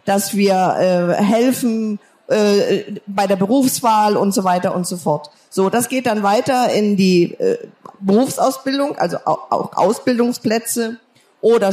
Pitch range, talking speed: 190-230 Hz, 145 wpm